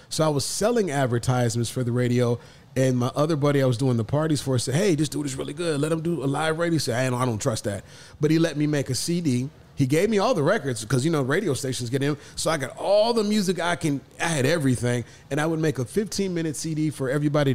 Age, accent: 30-49, American